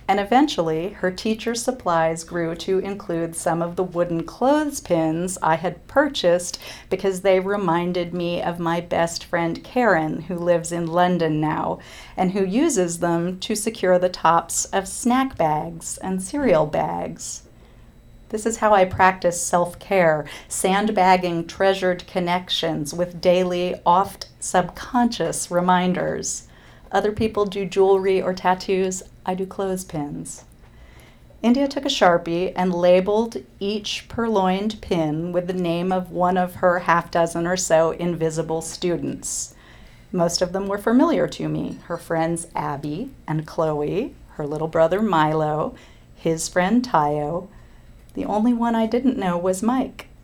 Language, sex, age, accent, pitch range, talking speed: English, female, 40-59, American, 165-195 Hz, 140 wpm